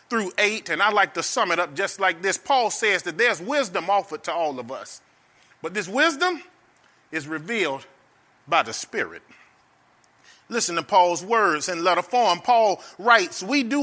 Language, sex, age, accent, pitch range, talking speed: English, male, 30-49, American, 165-235 Hz, 180 wpm